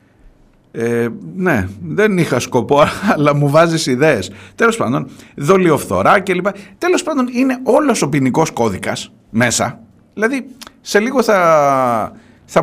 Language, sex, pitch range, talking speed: Greek, male, 115-190 Hz, 120 wpm